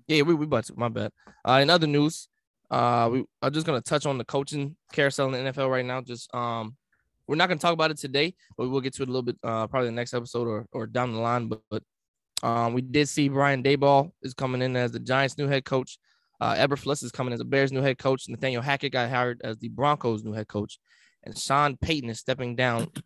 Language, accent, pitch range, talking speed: English, American, 125-170 Hz, 260 wpm